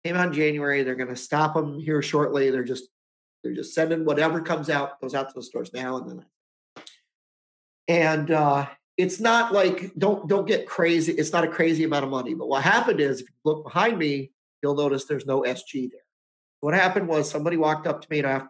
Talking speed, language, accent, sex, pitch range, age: 220 wpm, English, American, male, 135-165 Hz, 40-59